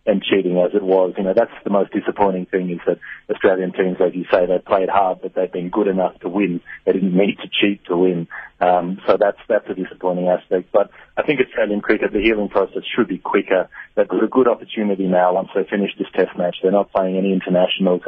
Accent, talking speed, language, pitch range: Australian, 240 wpm, English, 90-100 Hz